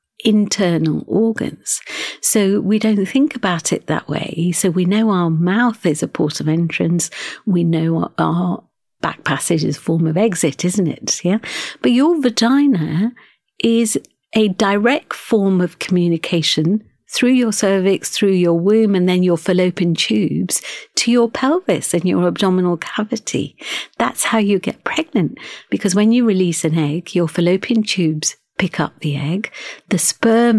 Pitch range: 170-215 Hz